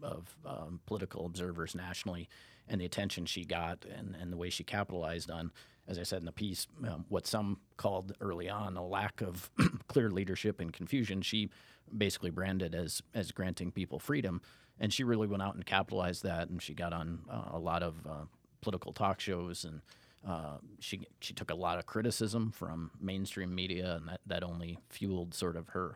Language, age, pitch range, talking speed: English, 30-49, 85-100 Hz, 195 wpm